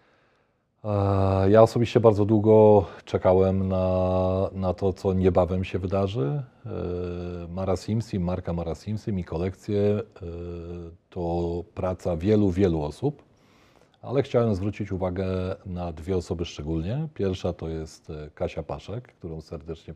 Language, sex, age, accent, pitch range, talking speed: Polish, male, 40-59, native, 85-100 Hz, 115 wpm